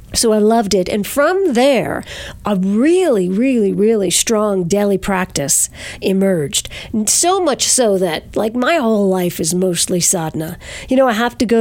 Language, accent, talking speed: English, American, 165 wpm